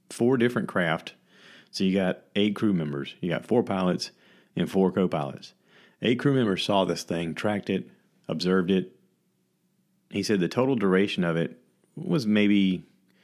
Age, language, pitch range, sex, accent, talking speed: 40-59, English, 80-105 Hz, male, American, 160 wpm